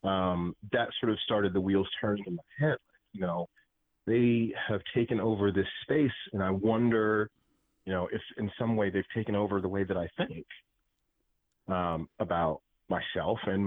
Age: 30-49